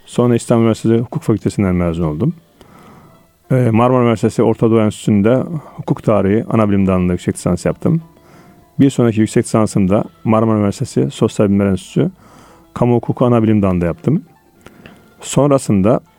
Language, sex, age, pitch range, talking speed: Turkish, male, 40-59, 100-130 Hz, 125 wpm